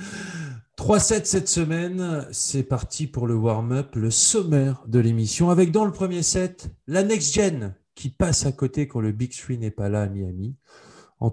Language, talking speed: French, 185 wpm